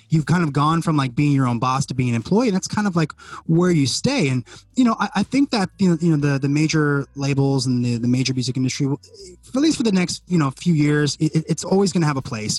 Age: 20-39